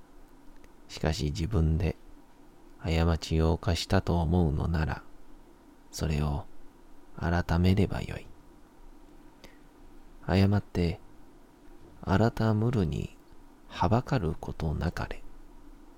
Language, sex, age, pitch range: Japanese, male, 40-59, 85-140 Hz